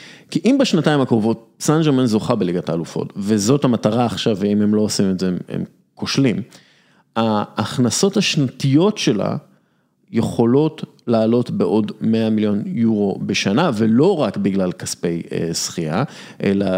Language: Hebrew